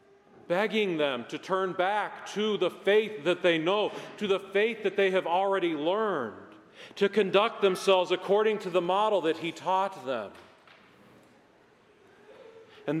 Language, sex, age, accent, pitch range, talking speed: English, male, 40-59, American, 170-215 Hz, 145 wpm